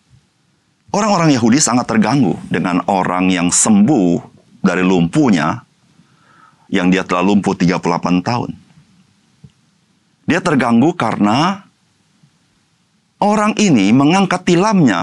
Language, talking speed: Indonesian, 90 wpm